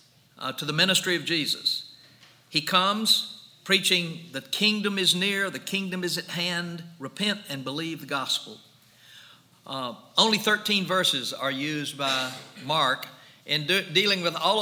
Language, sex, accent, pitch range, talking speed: English, male, American, 135-180 Hz, 150 wpm